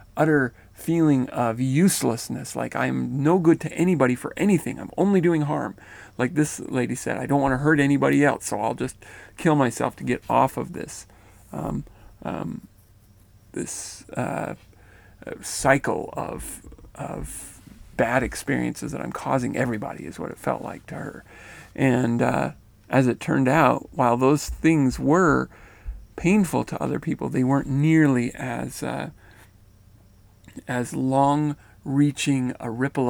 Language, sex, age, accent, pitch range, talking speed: English, male, 40-59, American, 115-145 Hz, 145 wpm